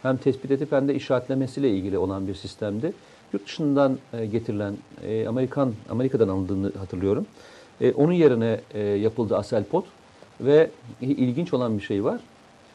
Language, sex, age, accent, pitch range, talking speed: Turkish, male, 50-69, native, 115-140 Hz, 130 wpm